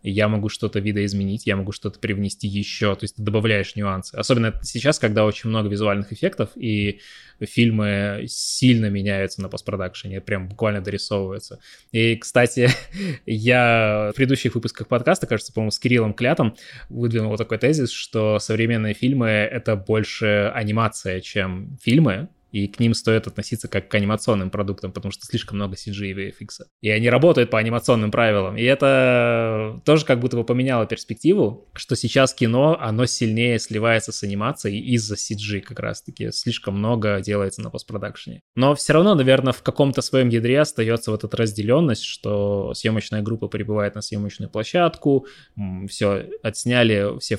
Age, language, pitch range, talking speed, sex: 20-39, Russian, 100-120 Hz, 155 wpm, male